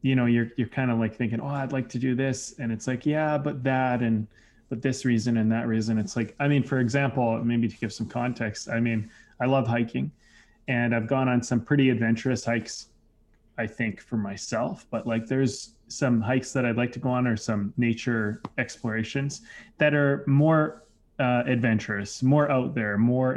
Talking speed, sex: 205 wpm, male